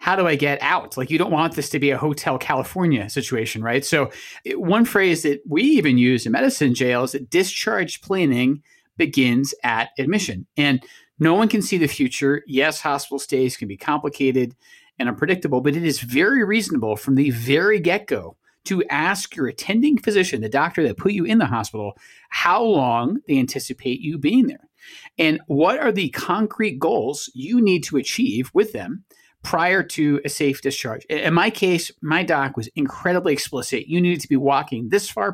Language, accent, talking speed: English, American, 185 wpm